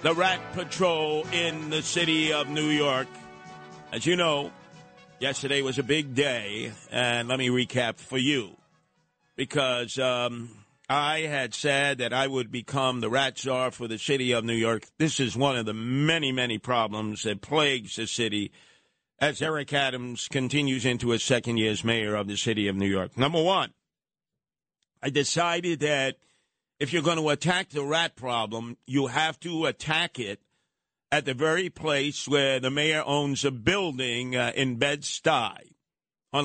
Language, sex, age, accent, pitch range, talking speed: English, male, 50-69, American, 125-160 Hz, 165 wpm